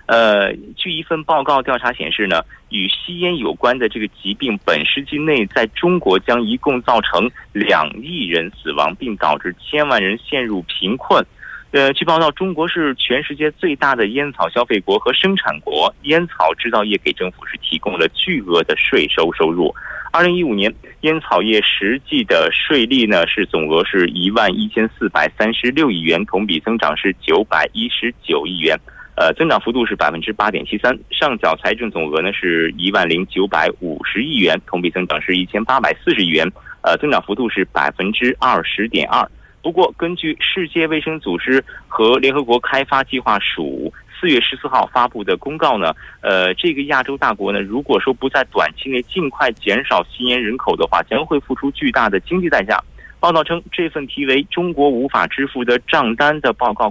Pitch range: 105-160 Hz